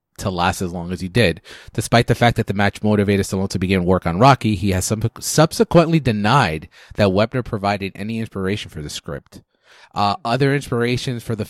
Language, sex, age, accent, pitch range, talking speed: English, male, 30-49, American, 95-115 Hz, 200 wpm